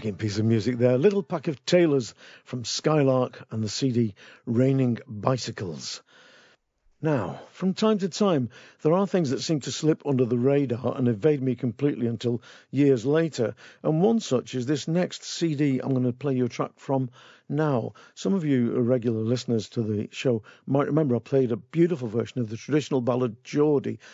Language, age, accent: English, 50-69, British